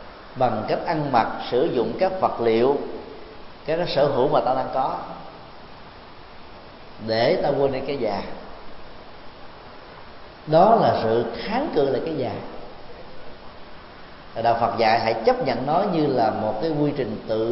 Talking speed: 160 wpm